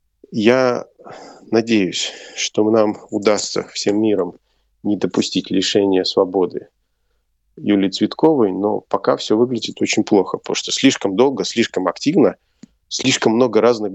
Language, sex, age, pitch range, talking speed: Russian, male, 30-49, 100-115 Hz, 120 wpm